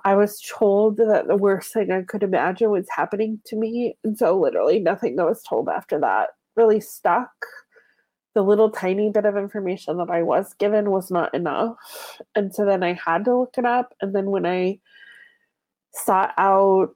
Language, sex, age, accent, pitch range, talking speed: English, female, 20-39, American, 180-220 Hz, 190 wpm